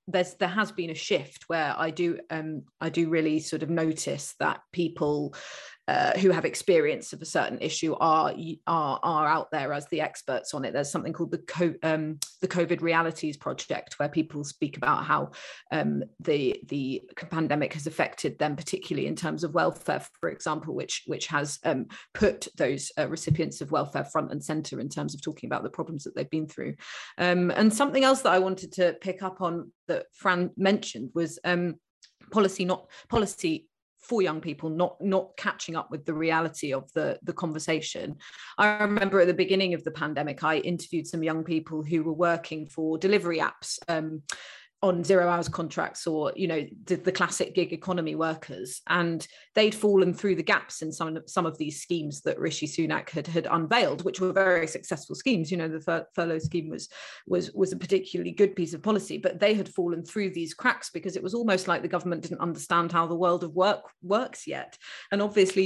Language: English